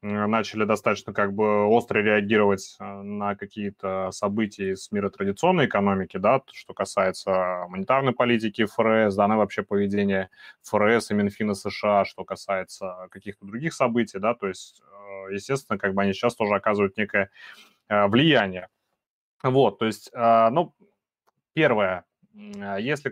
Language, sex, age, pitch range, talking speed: Russian, male, 20-39, 100-120 Hz, 125 wpm